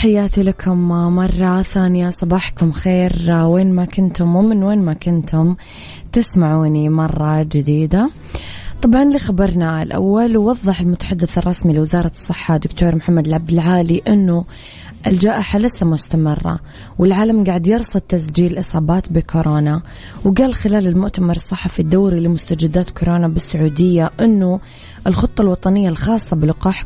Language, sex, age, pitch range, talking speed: English, female, 20-39, 165-195 Hz, 115 wpm